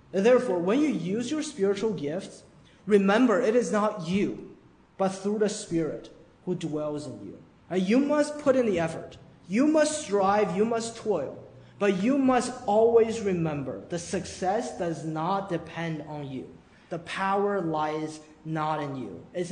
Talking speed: 155 wpm